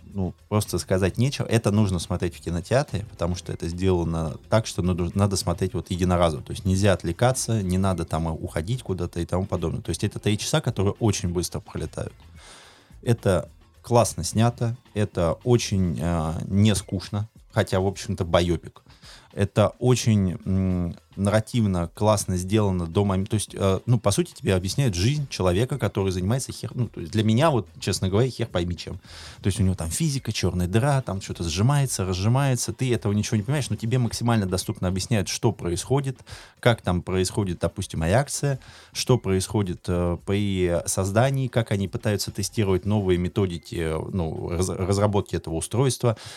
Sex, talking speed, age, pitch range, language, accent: male, 165 wpm, 20-39, 90-115 Hz, Russian, native